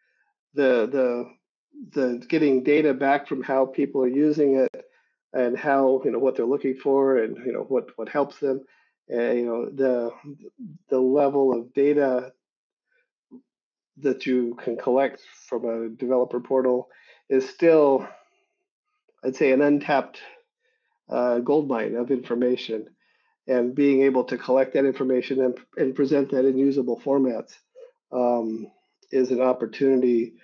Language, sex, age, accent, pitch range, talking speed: English, male, 50-69, American, 125-145 Hz, 140 wpm